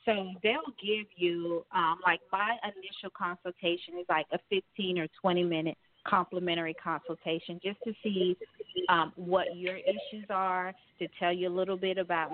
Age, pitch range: 30-49, 170-190 Hz